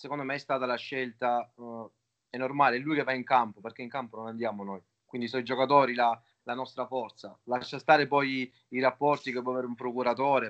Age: 30-49